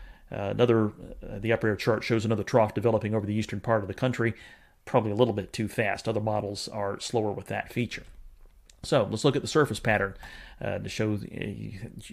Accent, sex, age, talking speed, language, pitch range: American, male, 30-49, 210 wpm, English, 105-120 Hz